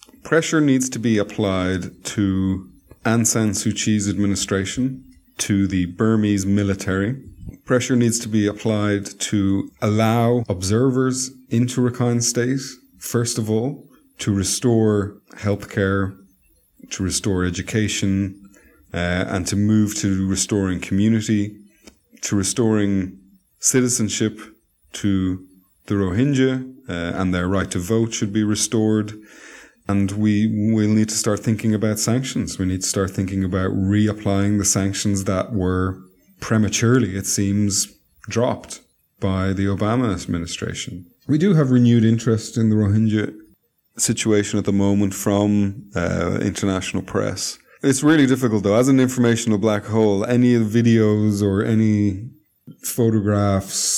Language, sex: English, male